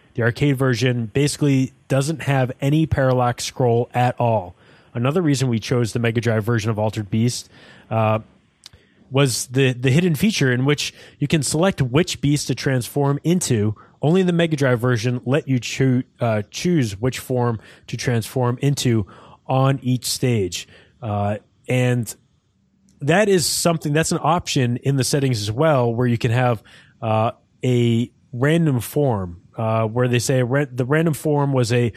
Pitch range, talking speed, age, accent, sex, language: 115-140 Hz, 160 wpm, 20-39, American, male, English